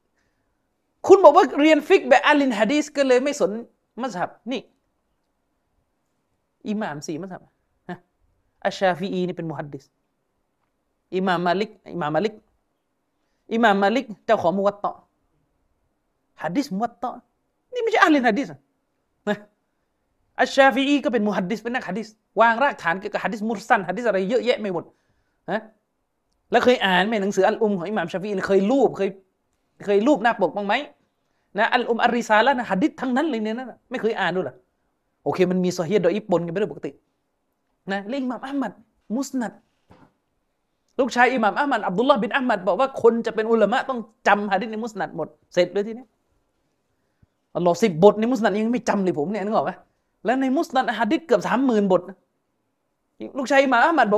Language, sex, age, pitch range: Thai, male, 30-49, 195-255 Hz